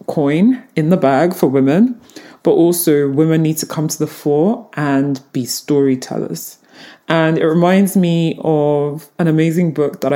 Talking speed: 160 wpm